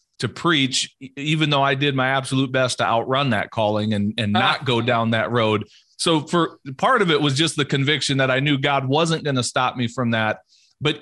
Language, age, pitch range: English, 40-59, 120-145 Hz